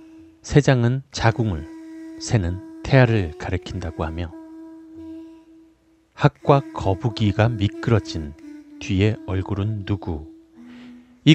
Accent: native